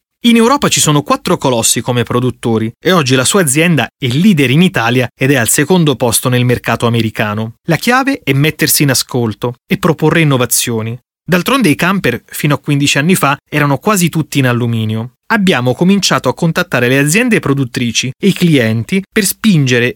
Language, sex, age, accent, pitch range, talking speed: Italian, male, 30-49, native, 125-180 Hz, 175 wpm